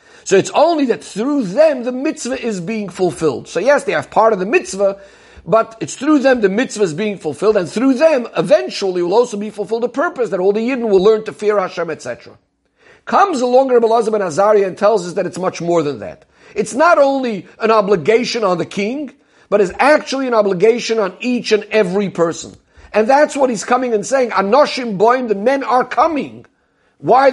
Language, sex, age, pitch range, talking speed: English, male, 50-69, 195-245 Hz, 210 wpm